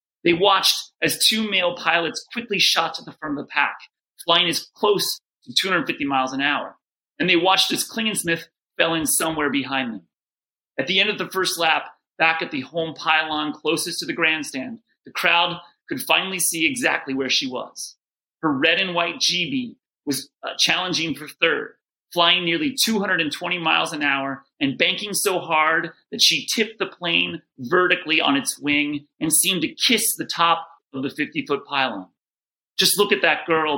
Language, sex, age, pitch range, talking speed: English, male, 30-49, 150-190 Hz, 180 wpm